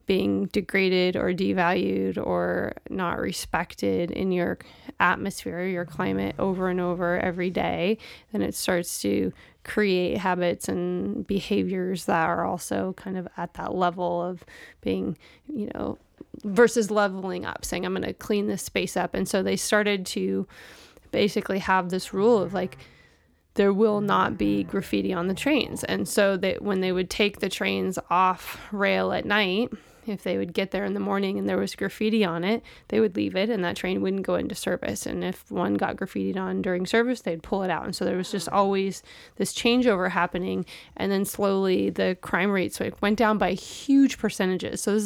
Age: 20-39